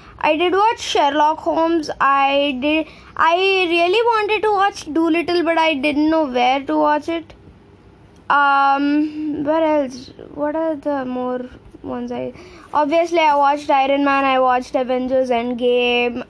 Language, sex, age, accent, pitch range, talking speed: English, female, 20-39, Indian, 255-330 Hz, 145 wpm